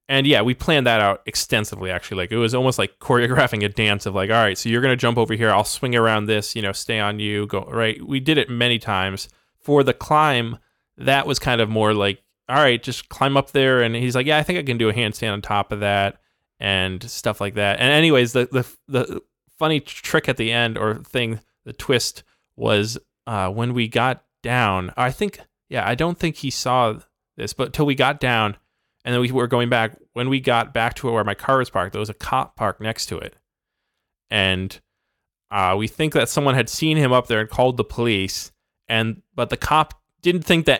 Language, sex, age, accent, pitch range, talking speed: English, male, 20-39, American, 105-130 Hz, 230 wpm